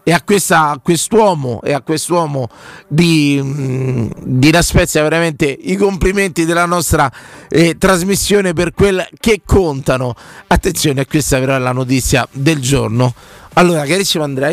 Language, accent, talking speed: Italian, native, 135 wpm